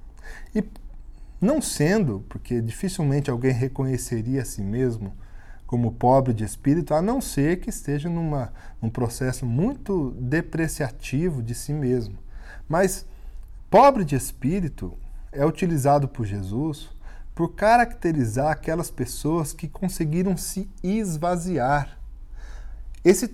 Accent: Brazilian